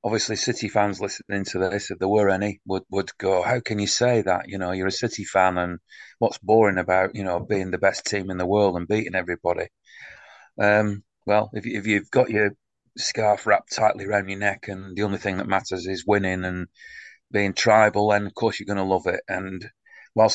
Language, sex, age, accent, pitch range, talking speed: English, male, 30-49, British, 95-105 Hz, 220 wpm